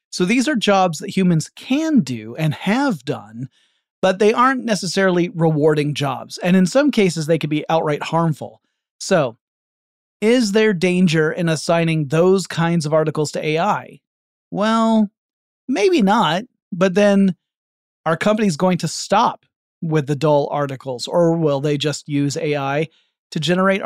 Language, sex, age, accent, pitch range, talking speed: English, male, 30-49, American, 150-195 Hz, 150 wpm